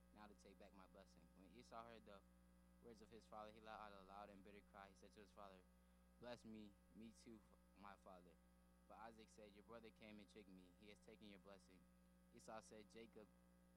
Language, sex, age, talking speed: English, male, 20-39, 220 wpm